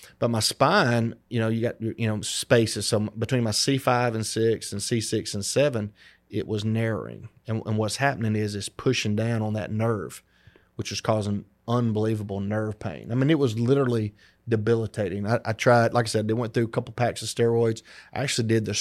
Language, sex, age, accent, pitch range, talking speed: English, male, 30-49, American, 105-120 Hz, 205 wpm